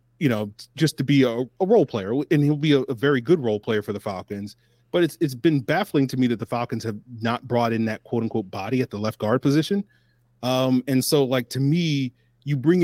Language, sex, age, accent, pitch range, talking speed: English, male, 30-49, American, 115-135 Hz, 245 wpm